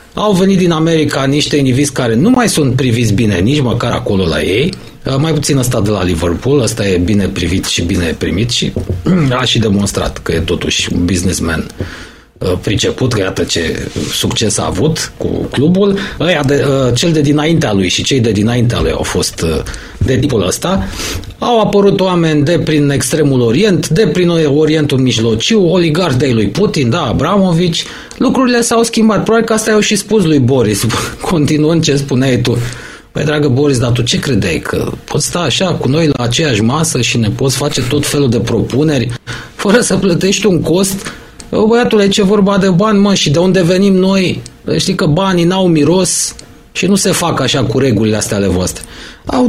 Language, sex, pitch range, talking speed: Romanian, male, 120-175 Hz, 185 wpm